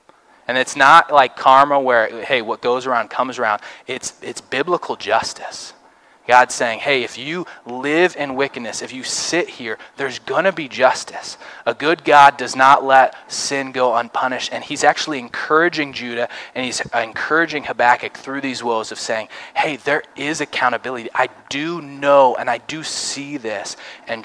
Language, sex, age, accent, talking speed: English, male, 20-39, American, 170 wpm